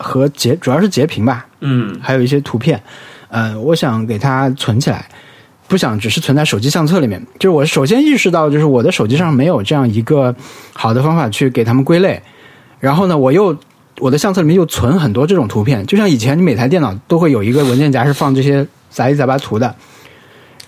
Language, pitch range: Chinese, 125-160 Hz